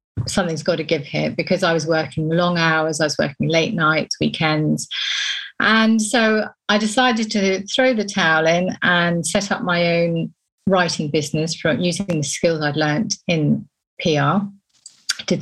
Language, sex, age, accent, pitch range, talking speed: English, female, 40-59, British, 165-205 Hz, 165 wpm